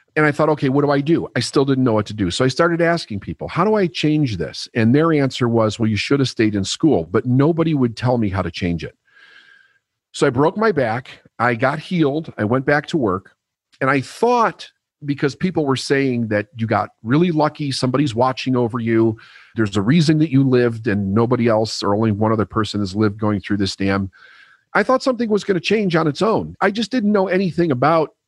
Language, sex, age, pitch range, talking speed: English, male, 40-59, 105-150 Hz, 235 wpm